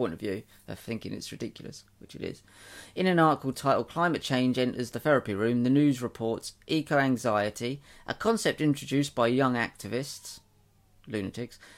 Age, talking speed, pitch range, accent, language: 40-59, 160 wpm, 115-145 Hz, British, English